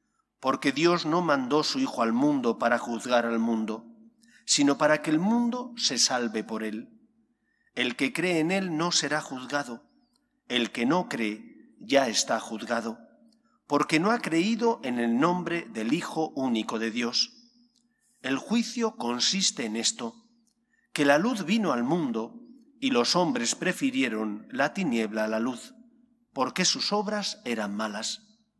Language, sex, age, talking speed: English, male, 40-59, 155 wpm